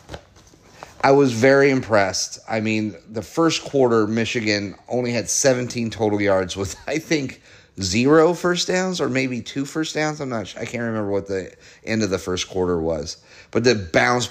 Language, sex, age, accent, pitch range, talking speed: English, male, 30-49, American, 95-120 Hz, 180 wpm